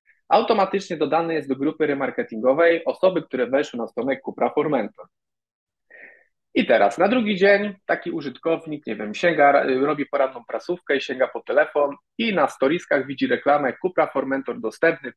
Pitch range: 135-180 Hz